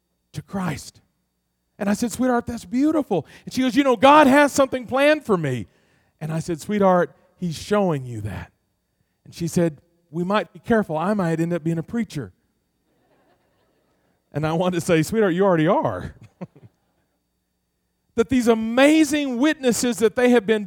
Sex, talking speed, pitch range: male, 170 wpm, 175-260 Hz